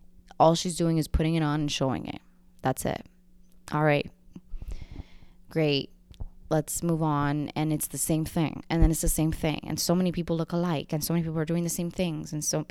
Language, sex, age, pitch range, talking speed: English, female, 20-39, 140-170 Hz, 215 wpm